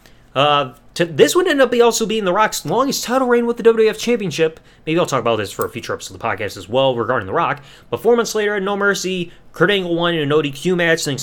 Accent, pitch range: American, 140-190 Hz